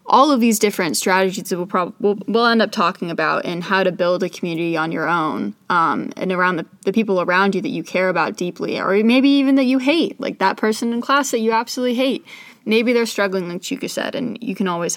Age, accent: 20-39, American